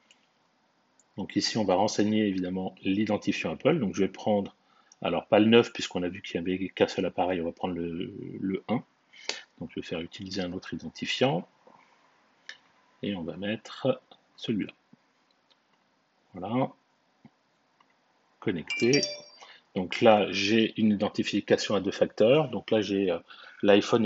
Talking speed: 145 wpm